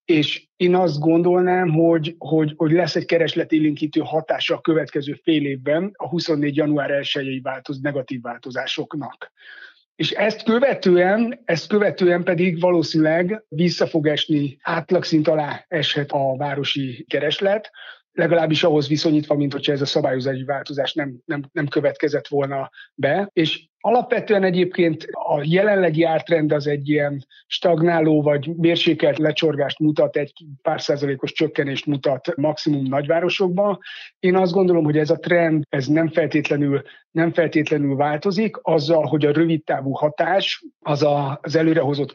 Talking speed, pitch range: 135 wpm, 145-175 Hz